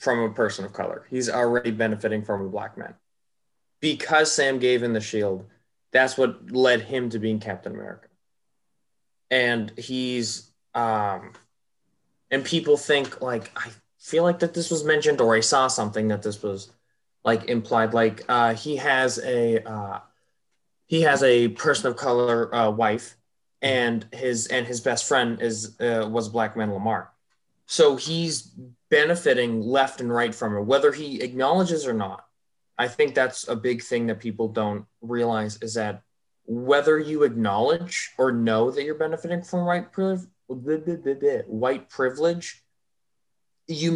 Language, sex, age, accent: English, male, 20-39, American